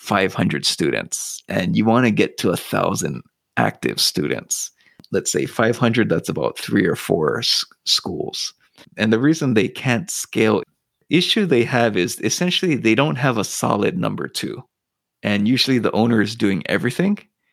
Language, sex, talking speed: English, male, 160 wpm